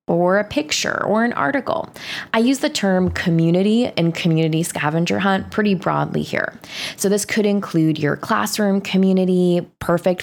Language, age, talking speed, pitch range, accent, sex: English, 20-39, 155 wpm, 160-195 Hz, American, female